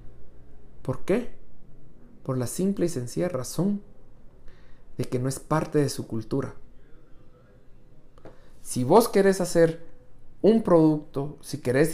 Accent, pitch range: Mexican, 120-150 Hz